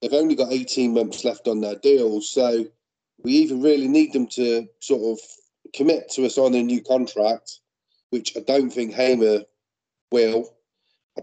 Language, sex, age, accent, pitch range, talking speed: English, male, 30-49, British, 115-130 Hz, 170 wpm